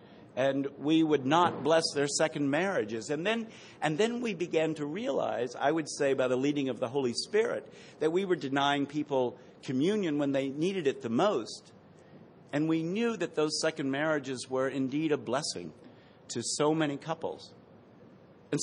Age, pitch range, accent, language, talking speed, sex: 50-69, 130-170 Hz, American, English, 175 wpm, male